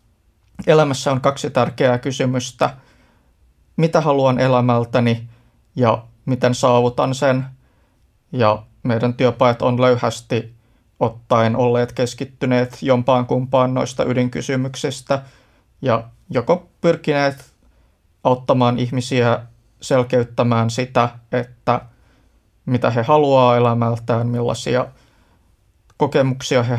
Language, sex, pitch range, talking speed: Finnish, male, 115-130 Hz, 85 wpm